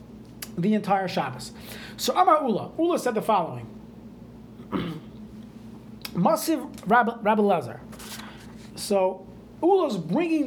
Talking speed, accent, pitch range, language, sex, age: 95 wpm, American, 185-235 Hz, English, male, 30-49